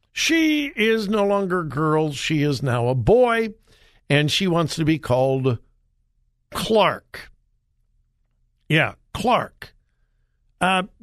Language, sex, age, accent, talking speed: English, male, 60-79, American, 115 wpm